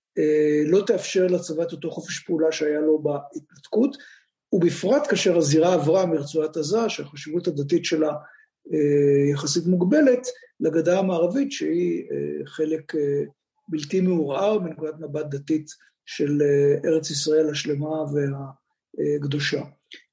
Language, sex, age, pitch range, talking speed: Hebrew, male, 50-69, 150-185 Hz, 105 wpm